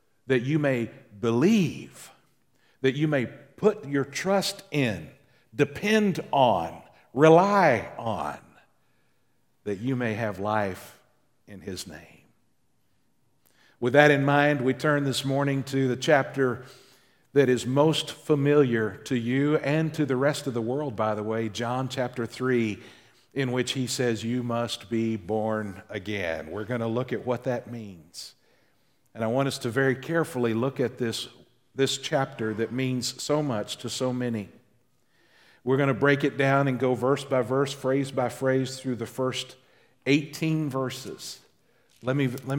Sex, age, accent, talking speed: male, 50-69, American, 155 wpm